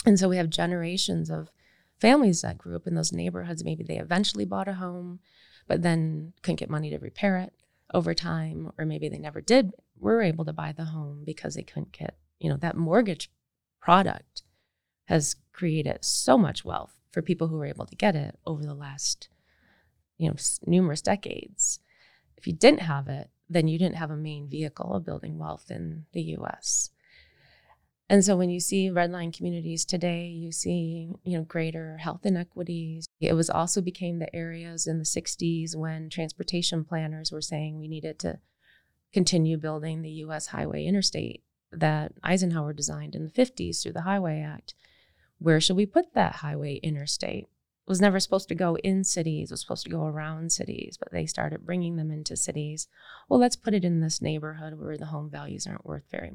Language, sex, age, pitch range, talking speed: English, female, 20-39, 150-175 Hz, 190 wpm